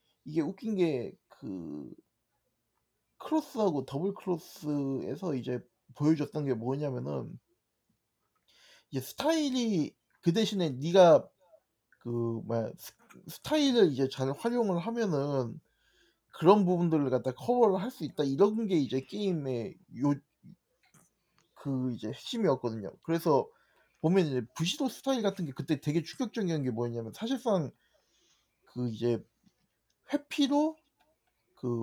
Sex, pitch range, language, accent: male, 130-200 Hz, Korean, native